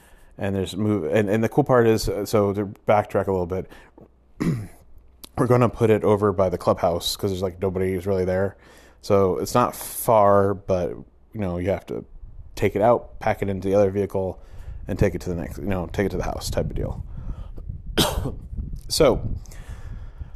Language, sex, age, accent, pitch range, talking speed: English, male, 30-49, American, 90-105 Hz, 195 wpm